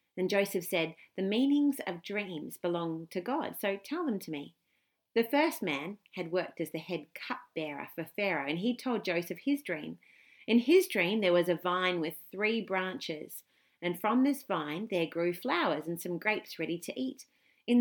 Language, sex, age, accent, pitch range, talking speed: English, female, 40-59, Australian, 165-235 Hz, 190 wpm